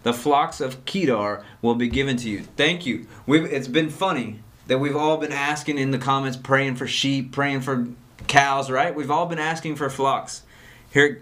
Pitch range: 120-150 Hz